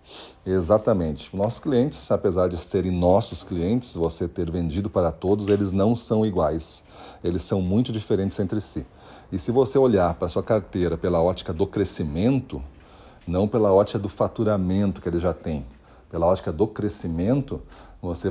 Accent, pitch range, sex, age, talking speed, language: Brazilian, 90-120 Hz, male, 40-59, 160 wpm, Portuguese